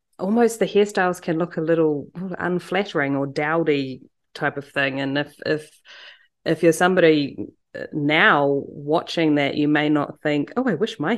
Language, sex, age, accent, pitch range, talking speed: English, female, 30-49, Australian, 150-175 Hz, 160 wpm